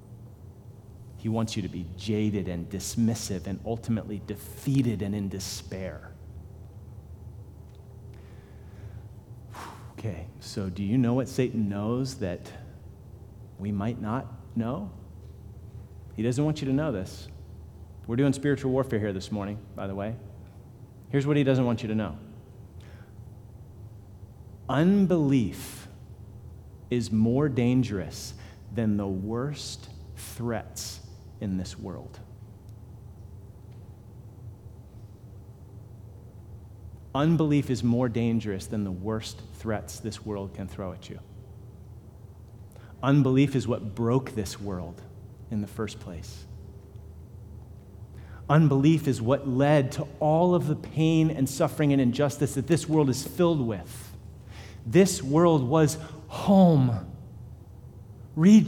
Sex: male